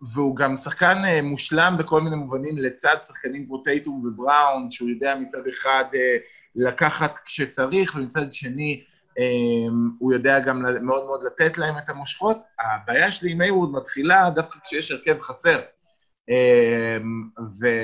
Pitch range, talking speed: 120-165 Hz, 140 wpm